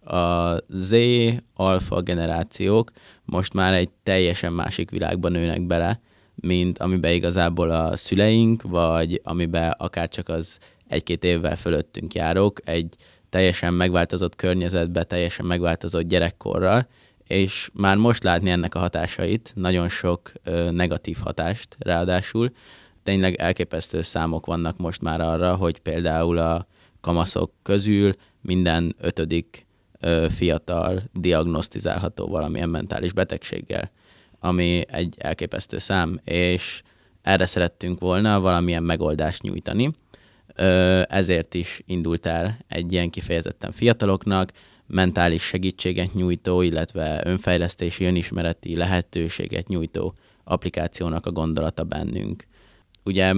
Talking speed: 105 wpm